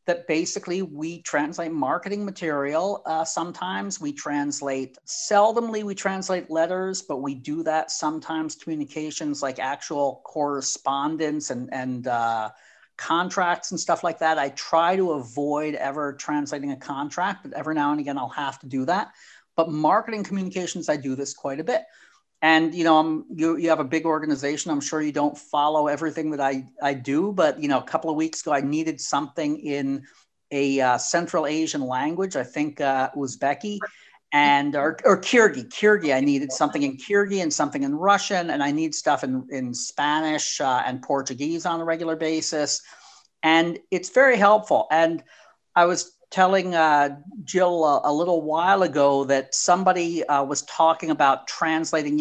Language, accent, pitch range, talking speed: English, American, 145-180 Hz, 170 wpm